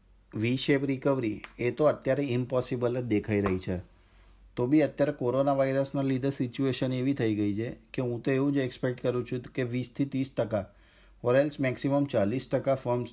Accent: native